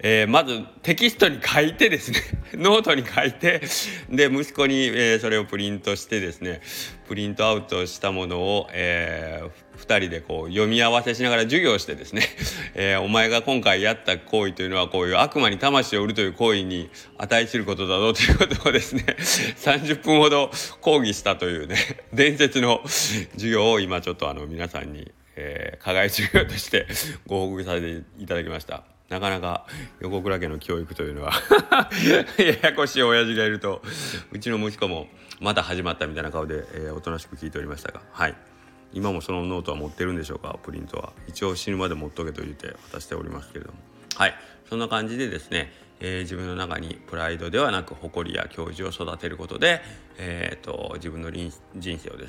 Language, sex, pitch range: Japanese, male, 85-115 Hz